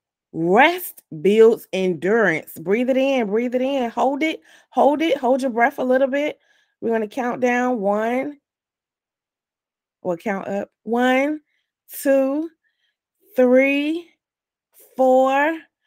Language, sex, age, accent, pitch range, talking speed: English, female, 20-39, American, 170-260 Hz, 115 wpm